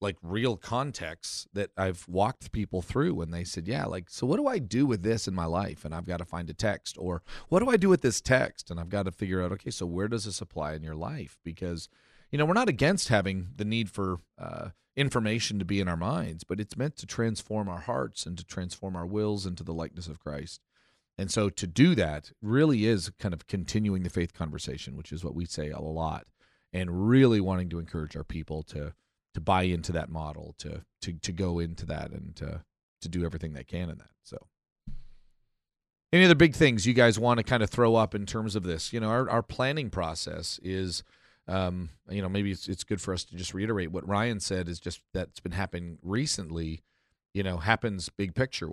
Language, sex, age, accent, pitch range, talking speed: English, male, 40-59, American, 85-110 Hz, 230 wpm